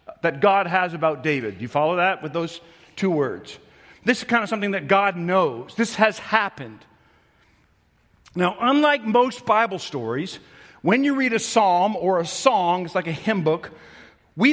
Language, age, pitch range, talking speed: English, 50-69, 175-235 Hz, 180 wpm